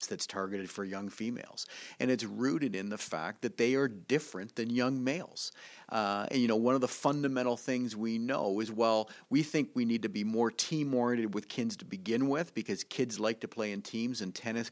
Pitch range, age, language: 110-135 Hz, 40-59, English